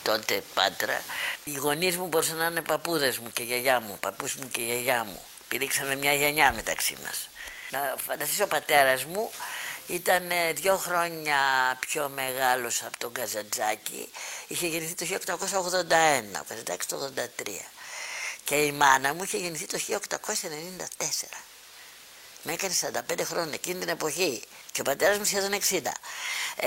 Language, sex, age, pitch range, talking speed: Greek, female, 60-79, 140-200 Hz, 145 wpm